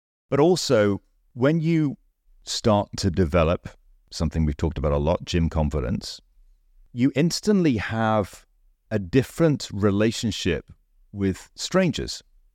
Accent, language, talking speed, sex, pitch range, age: British, English, 110 wpm, male, 90-115 Hz, 40-59